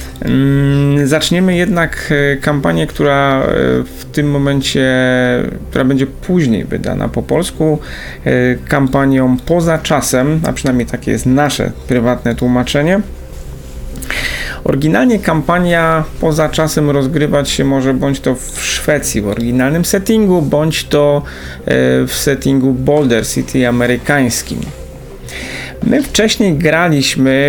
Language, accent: Polish, native